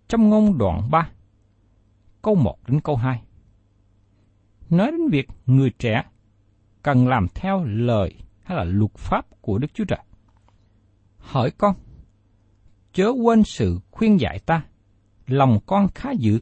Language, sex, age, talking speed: Vietnamese, male, 60-79, 140 wpm